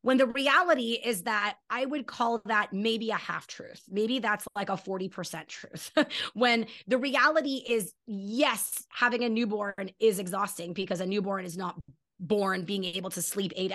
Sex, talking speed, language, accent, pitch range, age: female, 175 wpm, English, American, 195-240 Hz, 20-39